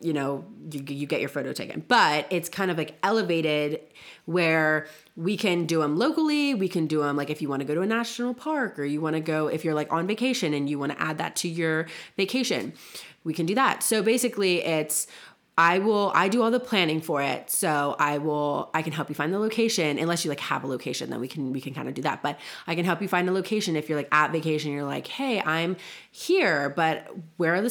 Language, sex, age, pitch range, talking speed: English, female, 30-49, 145-185 Hz, 250 wpm